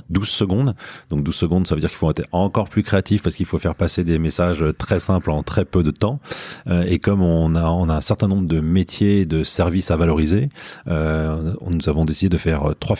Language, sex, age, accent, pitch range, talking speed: French, male, 30-49, French, 85-100 Hz, 230 wpm